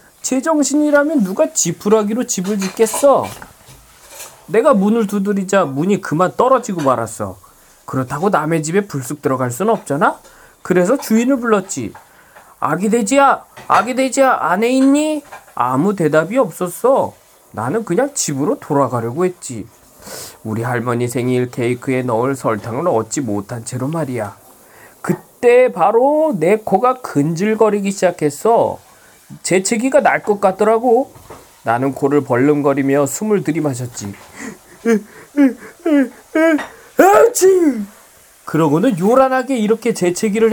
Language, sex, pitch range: Korean, male, 140-230 Hz